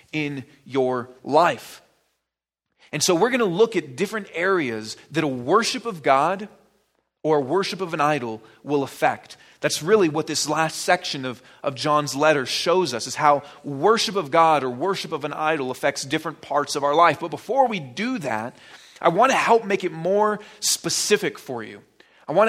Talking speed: 185 wpm